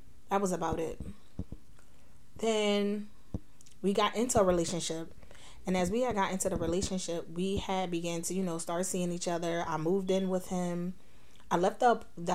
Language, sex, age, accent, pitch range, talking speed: English, female, 20-39, American, 165-195 Hz, 180 wpm